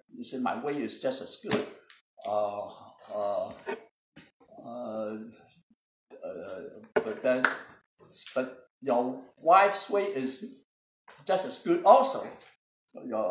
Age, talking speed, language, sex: 60-79, 110 wpm, English, male